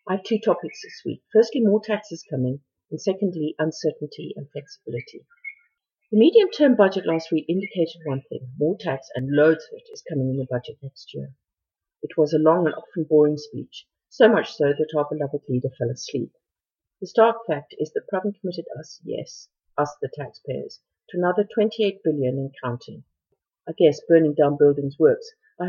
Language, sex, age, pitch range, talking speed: English, female, 50-69, 145-205 Hz, 185 wpm